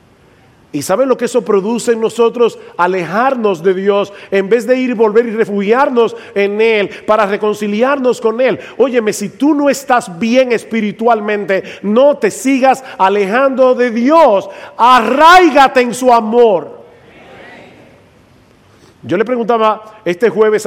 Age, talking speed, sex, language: 40-59, 135 wpm, male, English